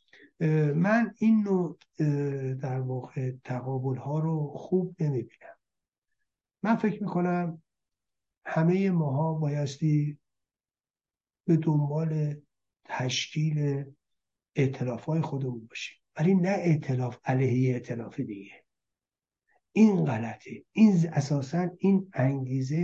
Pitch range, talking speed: 130-170 Hz, 85 wpm